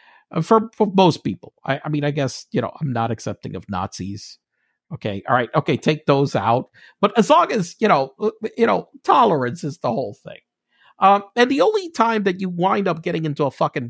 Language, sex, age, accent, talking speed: English, male, 50-69, American, 210 wpm